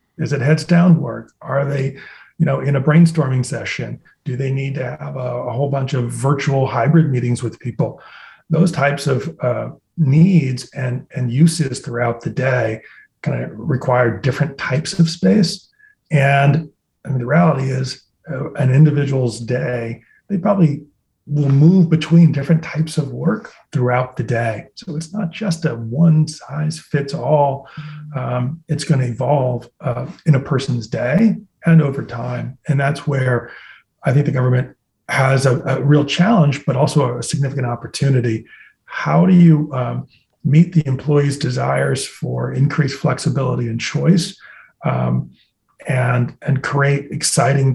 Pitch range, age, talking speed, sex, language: 125-160 Hz, 30-49, 145 wpm, male, English